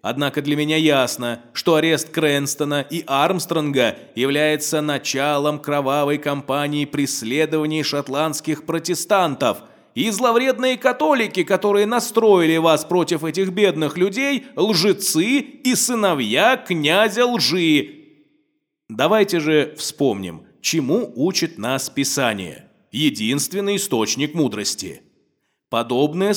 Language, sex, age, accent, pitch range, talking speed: Russian, male, 20-39, native, 150-205 Hz, 95 wpm